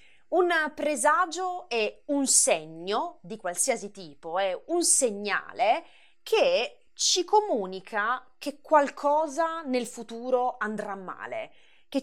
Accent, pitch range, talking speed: native, 205-295 Hz, 105 wpm